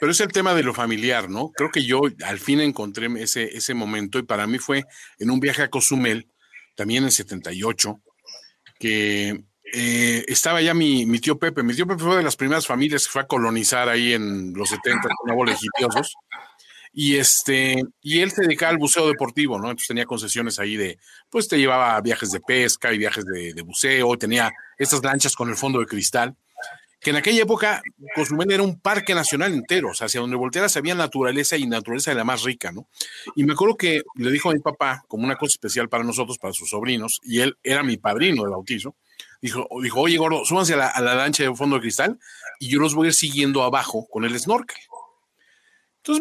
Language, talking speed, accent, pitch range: Spanish, 215 wpm, Mexican, 115-155 Hz